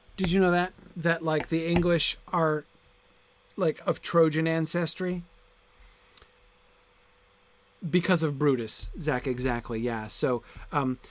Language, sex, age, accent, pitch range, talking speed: English, male, 40-59, American, 130-165 Hz, 115 wpm